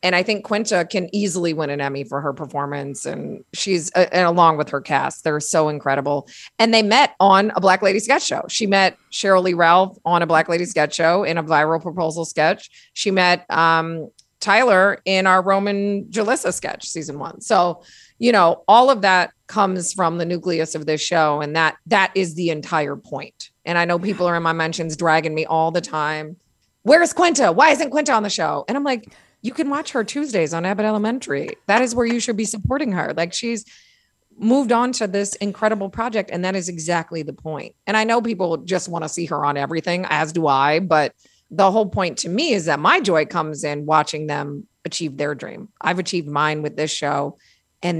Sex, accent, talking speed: female, American, 215 wpm